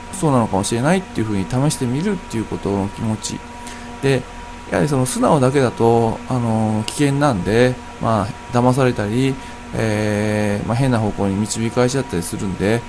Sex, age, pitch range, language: male, 20-39, 105-145 Hz, Japanese